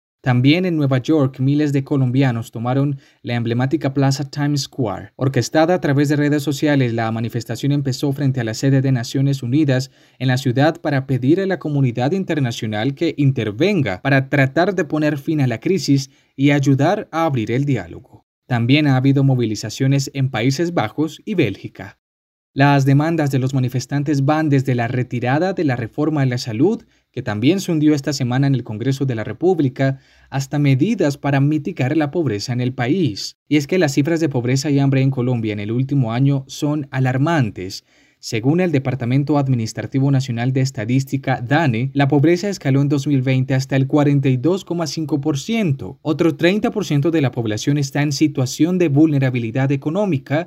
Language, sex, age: Spanish, male, 20-39